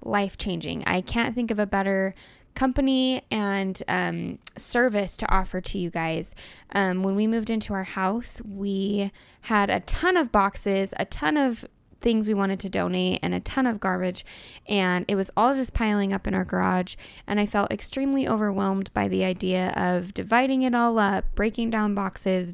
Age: 10-29